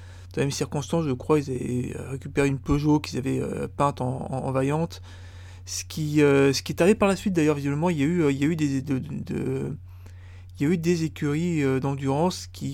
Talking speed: 180 wpm